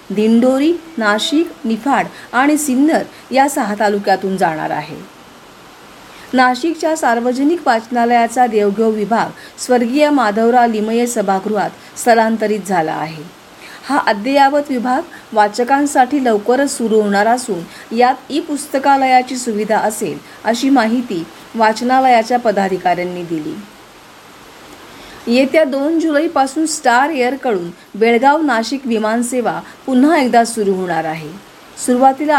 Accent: native